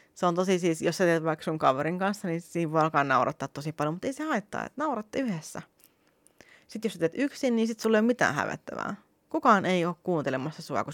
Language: Finnish